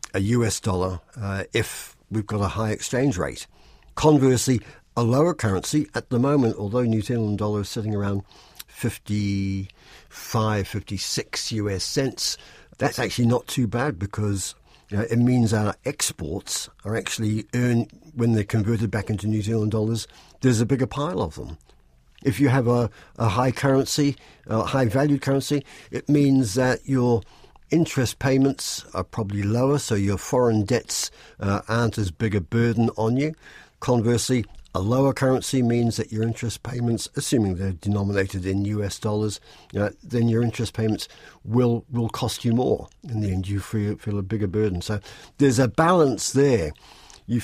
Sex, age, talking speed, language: male, 60-79, 165 wpm, English